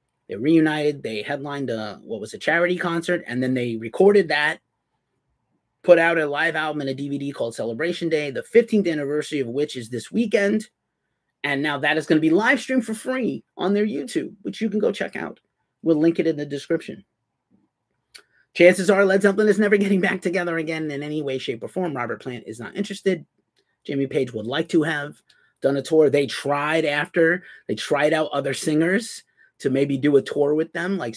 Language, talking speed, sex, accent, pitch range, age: English, 200 wpm, male, American, 135-195 Hz, 30-49